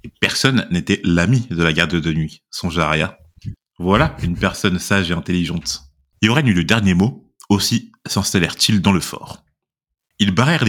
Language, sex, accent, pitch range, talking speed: French, male, French, 90-115 Hz, 170 wpm